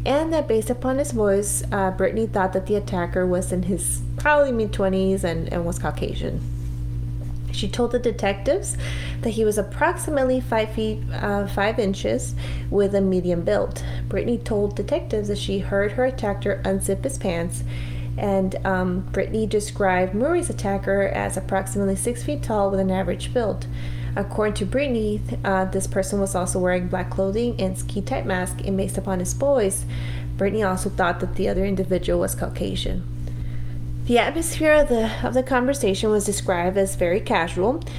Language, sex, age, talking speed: English, female, 30-49, 165 wpm